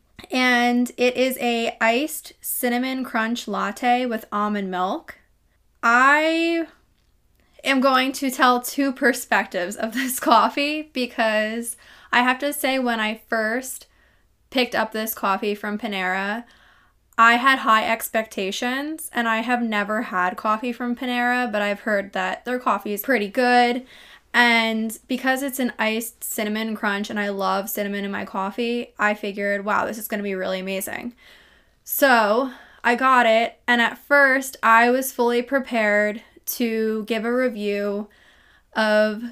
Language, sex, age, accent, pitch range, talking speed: English, female, 10-29, American, 220-260 Hz, 145 wpm